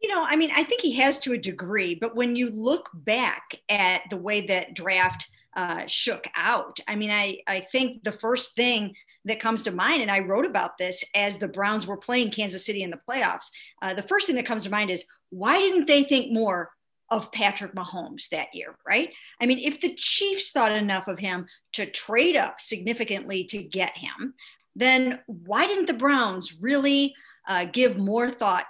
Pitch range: 190-250 Hz